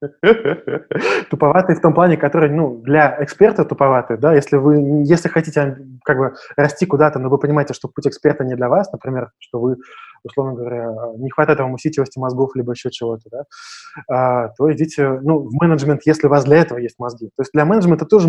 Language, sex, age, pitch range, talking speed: Russian, male, 20-39, 130-155 Hz, 195 wpm